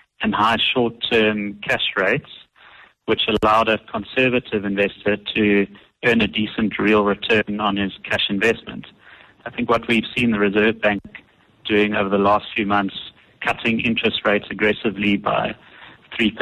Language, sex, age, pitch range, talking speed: English, male, 70-89, 100-115 Hz, 145 wpm